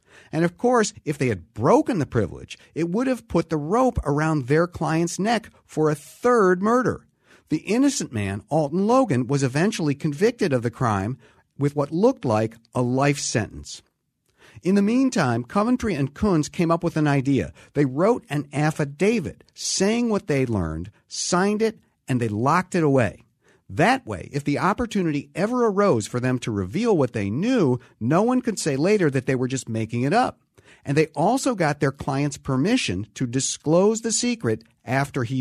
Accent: American